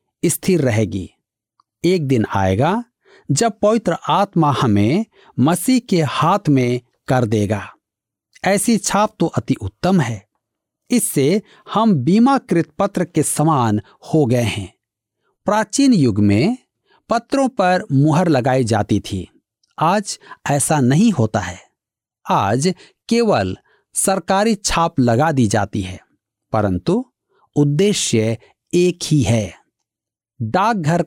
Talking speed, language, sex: 110 wpm, Hindi, male